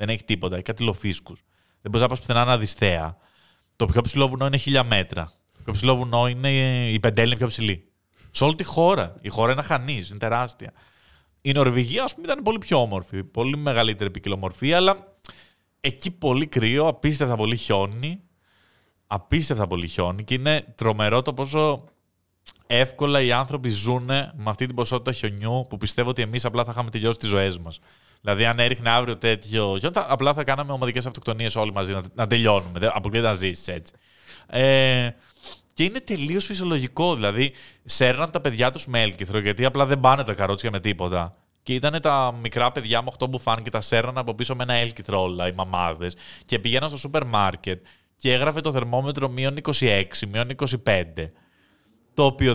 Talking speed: 175 wpm